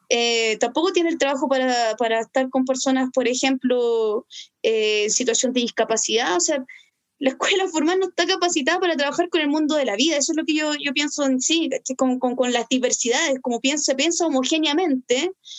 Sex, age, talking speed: female, 20-39, 200 wpm